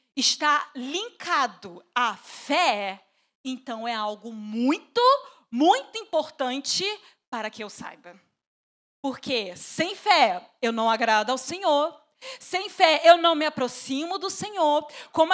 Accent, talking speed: Brazilian, 120 wpm